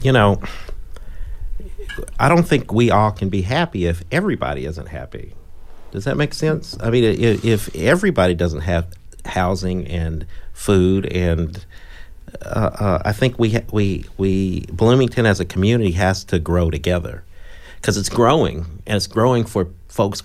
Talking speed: 155 wpm